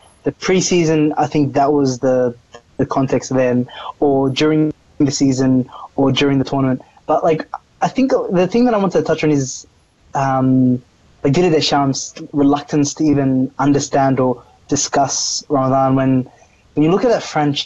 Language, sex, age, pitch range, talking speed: English, male, 20-39, 130-150 Hz, 165 wpm